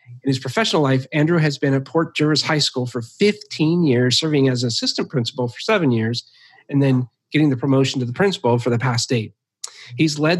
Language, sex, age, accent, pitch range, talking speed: English, male, 40-59, American, 125-165 Hz, 210 wpm